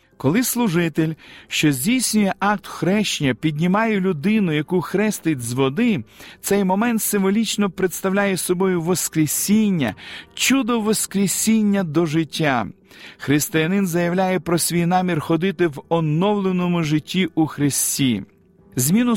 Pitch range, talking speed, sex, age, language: 155-195 Hz, 105 wpm, male, 40-59, Ukrainian